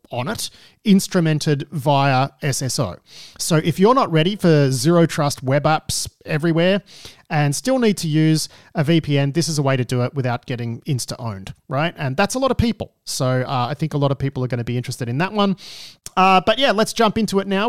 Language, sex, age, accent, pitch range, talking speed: English, male, 40-59, Australian, 130-180 Hz, 220 wpm